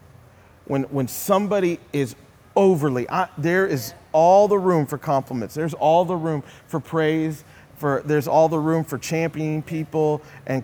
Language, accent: English, American